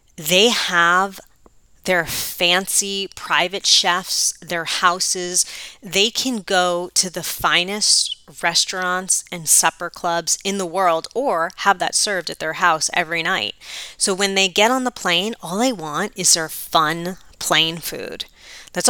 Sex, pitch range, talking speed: female, 170-200 Hz, 145 wpm